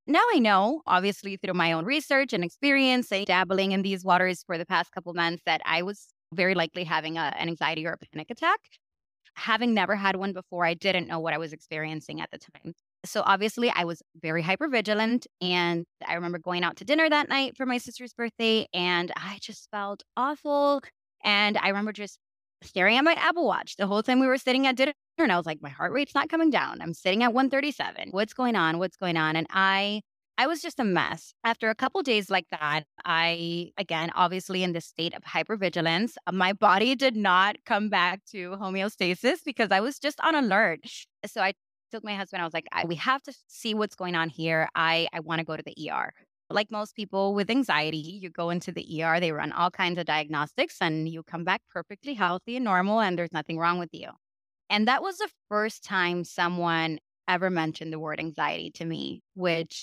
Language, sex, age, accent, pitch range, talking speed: English, female, 20-39, American, 165-220 Hz, 215 wpm